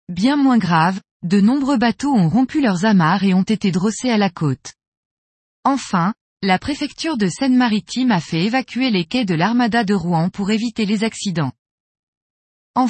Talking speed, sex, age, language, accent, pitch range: 165 wpm, female, 20-39, French, French, 180-245 Hz